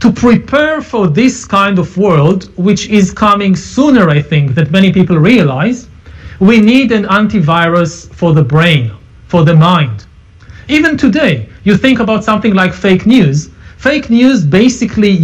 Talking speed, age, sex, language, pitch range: 155 wpm, 40-59, male, English, 165-230 Hz